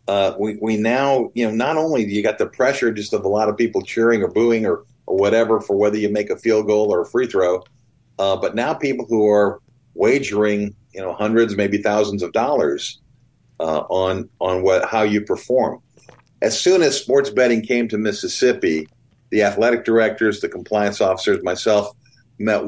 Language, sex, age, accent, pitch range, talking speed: English, male, 50-69, American, 100-120 Hz, 195 wpm